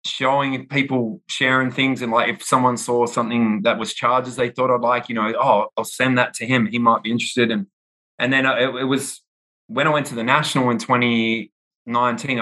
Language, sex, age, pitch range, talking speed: English, male, 20-39, 110-135 Hz, 210 wpm